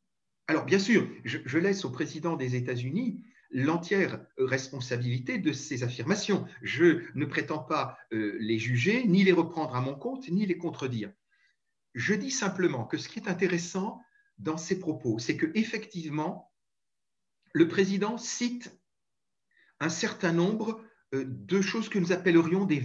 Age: 50-69